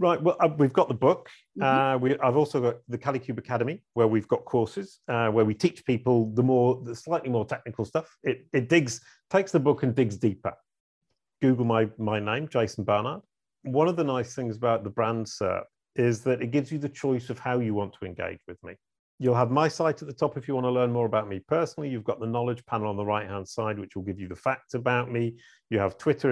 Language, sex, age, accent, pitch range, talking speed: English, male, 40-59, British, 110-140 Hz, 240 wpm